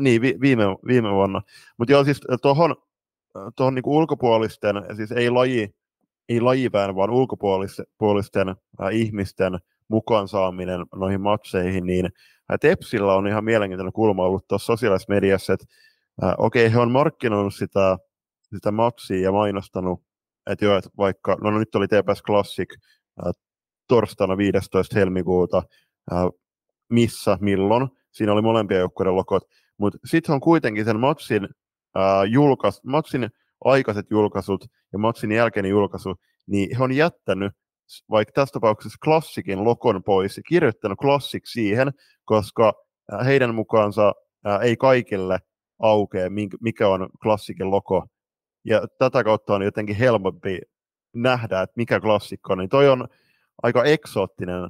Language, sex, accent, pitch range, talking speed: Finnish, male, native, 95-120 Hz, 130 wpm